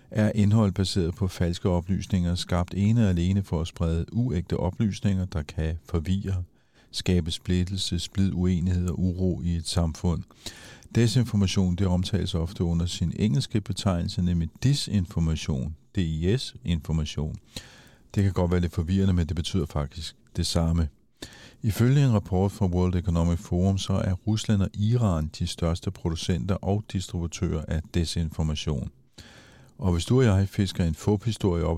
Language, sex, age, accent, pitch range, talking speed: Danish, male, 50-69, native, 85-100 Hz, 150 wpm